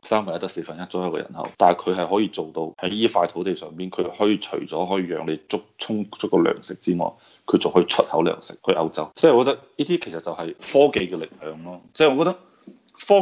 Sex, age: male, 20-39